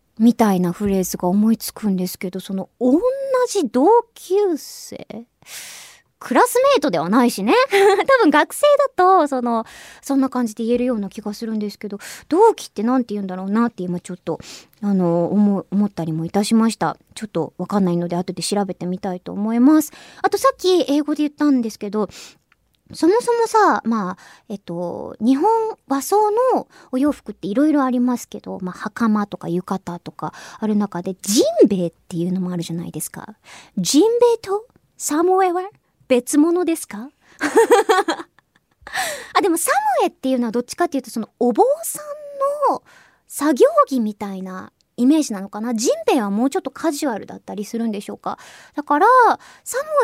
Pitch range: 200-325 Hz